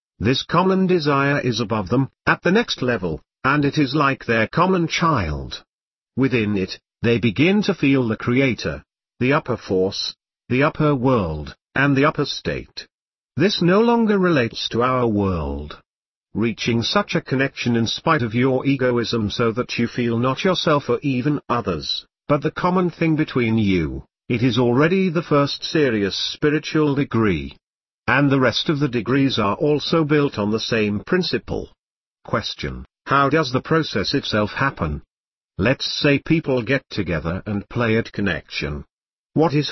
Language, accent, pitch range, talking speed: English, British, 105-150 Hz, 160 wpm